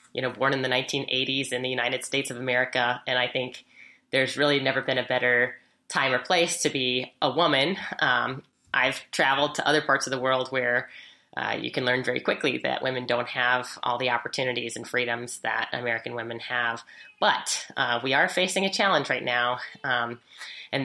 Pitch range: 125-145 Hz